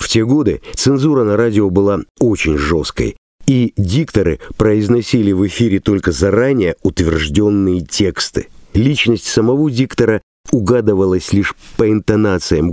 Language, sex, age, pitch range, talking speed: Russian, male, 50-69, 90-120 Hz, 120 wpm